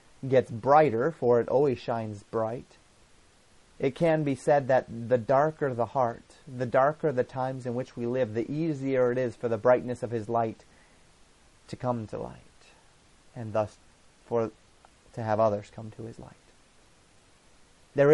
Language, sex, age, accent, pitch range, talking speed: English, male, 30-49, American, 115-130 Hz, 160 wpm